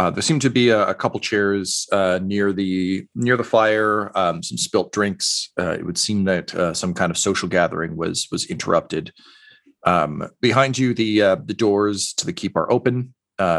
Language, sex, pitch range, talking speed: English, male, 90-110 Hz, 205 wpm